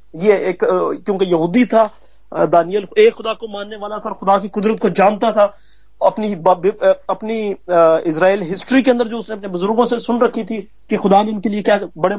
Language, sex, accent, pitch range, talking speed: Hindi, male, native, 190-240 Hz, 165 wpm